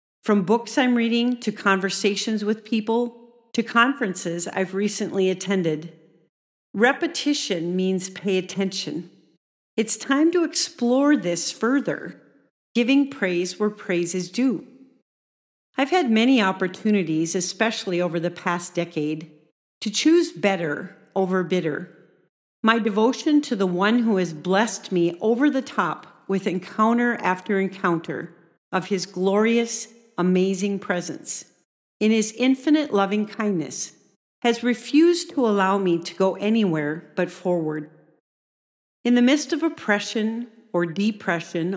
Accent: American